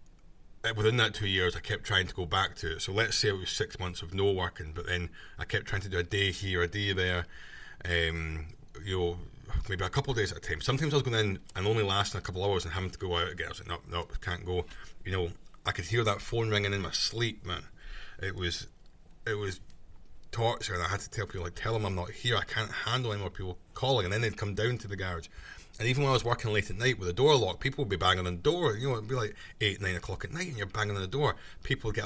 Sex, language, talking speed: male, English, 290 wpm